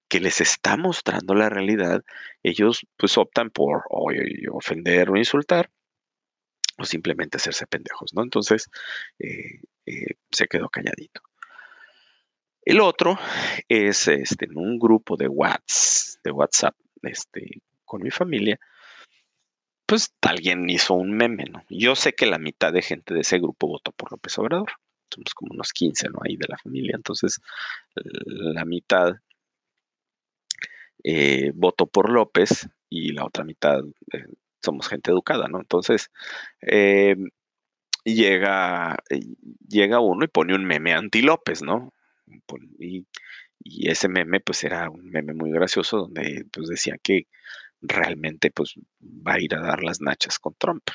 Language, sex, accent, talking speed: Spanish, male, Mexican, 140 wpm